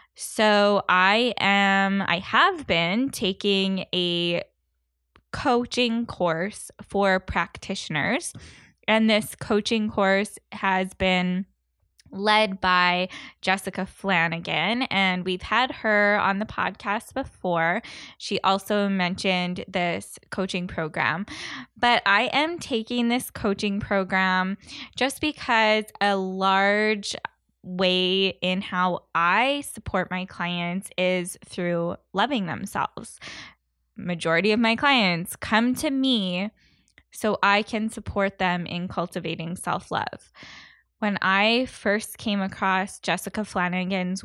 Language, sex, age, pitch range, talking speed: English, female, 10-29, 180-215 Hz, 110 wpm